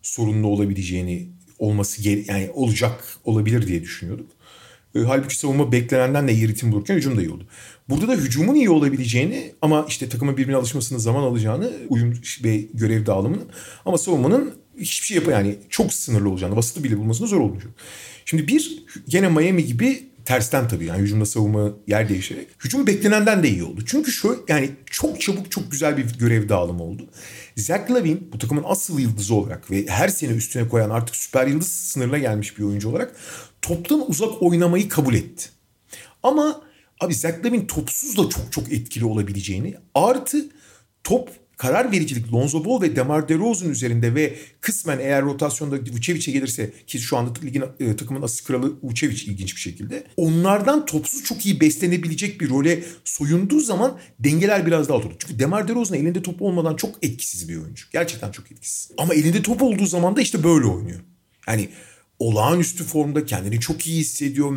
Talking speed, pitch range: 170 wpm, 110-170 Hz